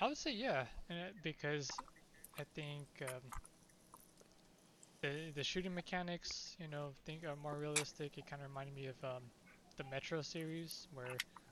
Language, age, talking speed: English, 20-39, 150 wpm